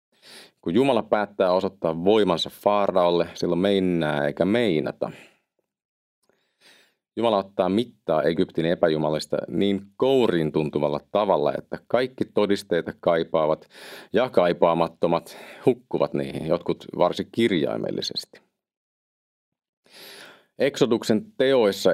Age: 40-59